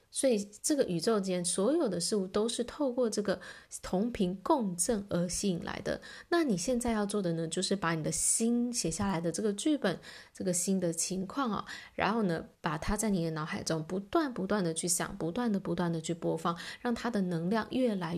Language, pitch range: Chinese, 175-235 Hz